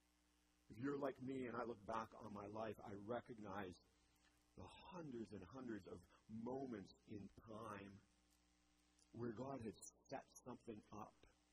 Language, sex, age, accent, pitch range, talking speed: English, male, 50-69, American, 75-115 Hz, 140 wpm